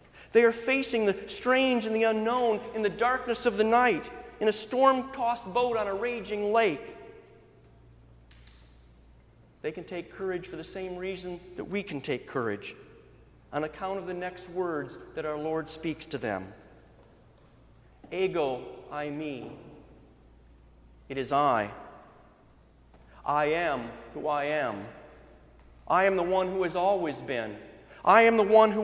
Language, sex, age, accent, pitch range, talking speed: English, male, 40-59, American, 150-230 Hz, 150 wpm